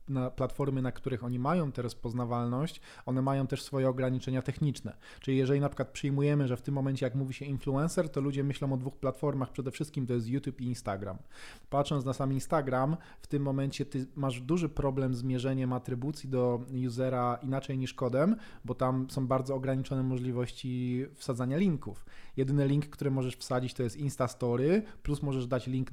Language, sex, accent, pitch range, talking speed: Polish, male, native, 120-135 Hz, 185 wpm